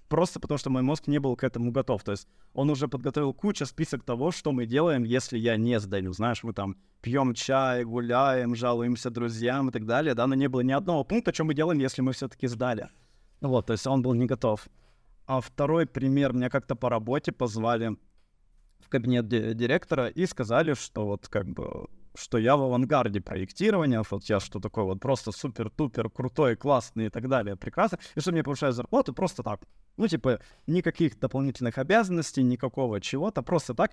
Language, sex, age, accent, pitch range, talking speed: Russian, male, 20-39, native, 115-145 Hz, 195 wpm